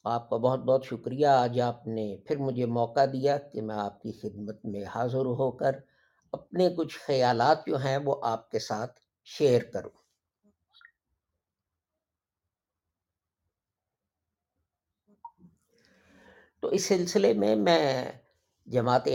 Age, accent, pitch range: 50-69, Indian, 110-155 Hz